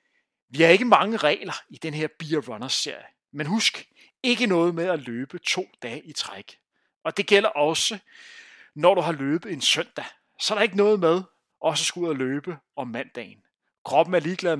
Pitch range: 150-220 Hz